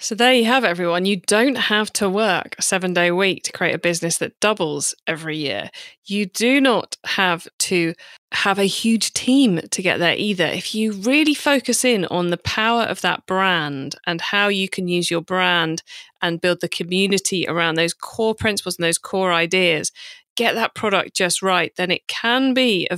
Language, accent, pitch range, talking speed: English, British, 180-235 Hz, 200 wpm